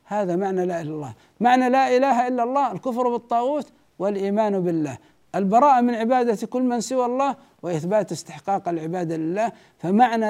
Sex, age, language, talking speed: male, 60-79, Arabic, 155 wpm